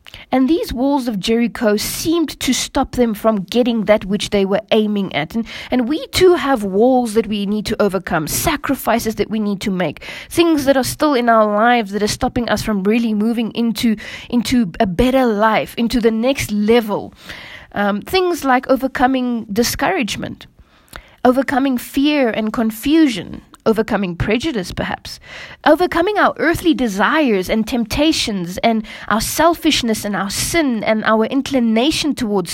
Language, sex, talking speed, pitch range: English, female, 155 wpm, 215-275 Hz